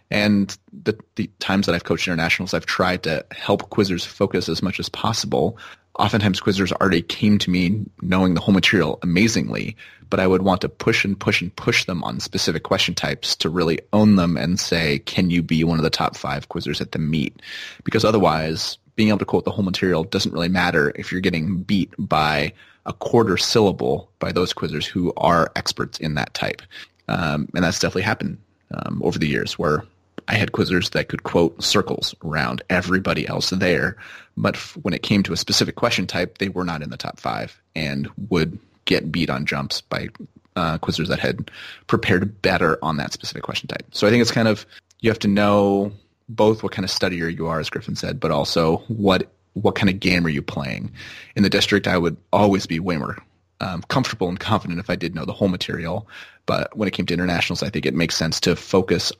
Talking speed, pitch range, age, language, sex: 210 wpm, 85-100 Hz, 30-49, English, male